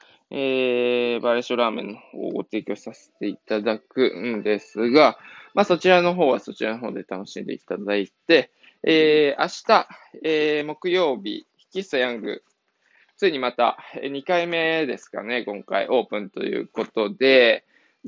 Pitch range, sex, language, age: 115-170 Hz, male, Japanese, 20-39